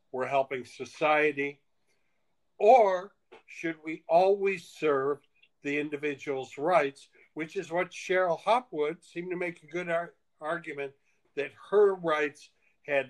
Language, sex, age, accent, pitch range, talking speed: English, male, 60-79, American, 140-180 Hz, 120 wpm